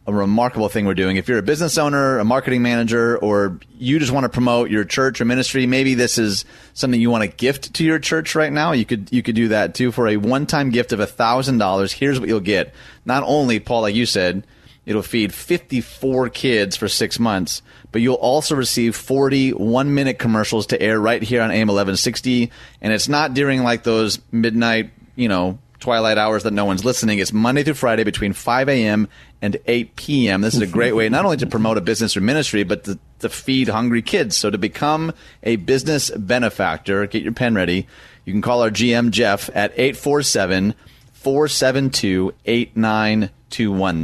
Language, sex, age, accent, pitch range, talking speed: English, male, 30-49, American, 105-130 Hz, 200 wpm